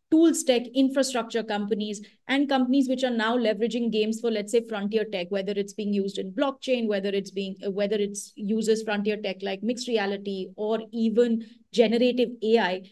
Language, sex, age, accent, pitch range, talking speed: English, female, 30-49, Indian, 210-250 Hz, 170 wpm